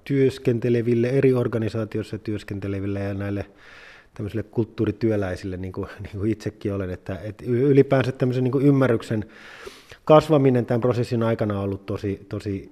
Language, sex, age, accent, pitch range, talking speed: Finnish, male, 20-39, native, 105-125 Hz, 125 wpm